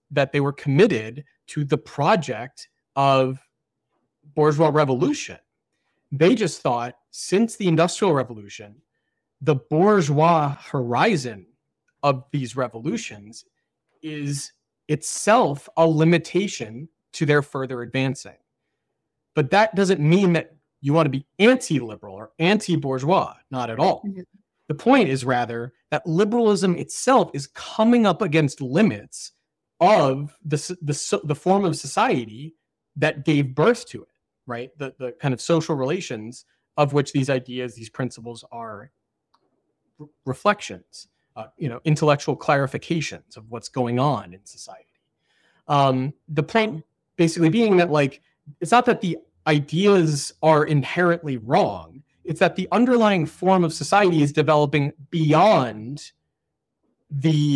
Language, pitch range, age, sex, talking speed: English, 135-170 Hz, 30-49, male, 125 wpm